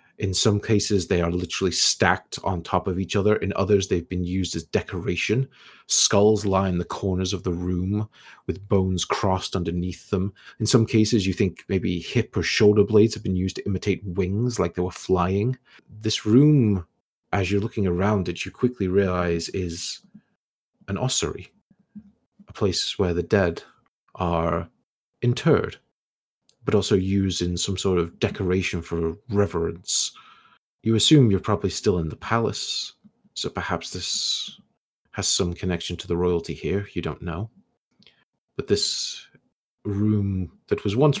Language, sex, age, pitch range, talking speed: English, male, 30-49, 90-105 Hz, 160 wpm